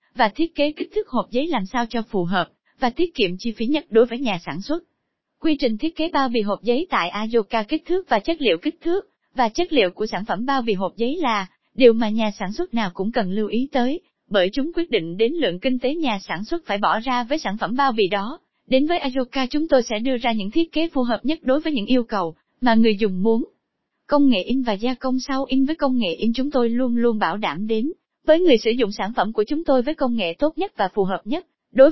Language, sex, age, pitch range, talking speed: Vietnamese, female, 20-39, 210-285 Hz, 270 wpm